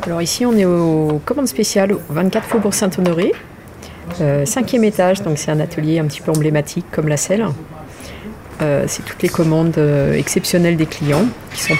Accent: French